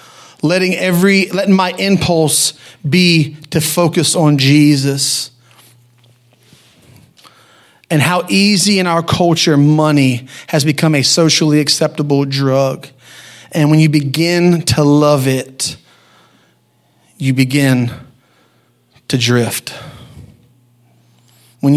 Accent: American